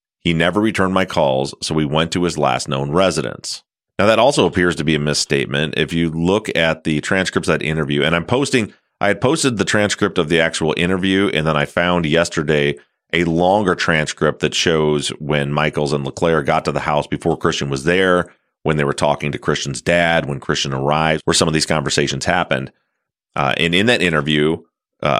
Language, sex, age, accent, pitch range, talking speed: English, male, 30-49, American, 75-85 Hz, 205 wpm